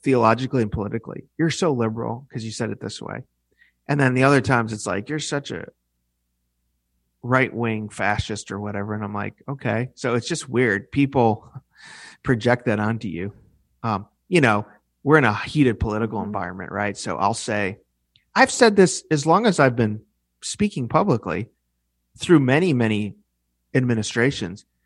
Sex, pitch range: male, 100-135 Hz